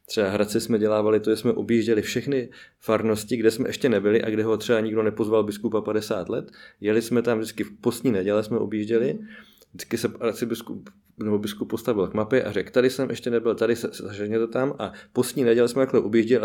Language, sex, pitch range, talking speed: Czech, male, 105-115 Hz, 215 wpm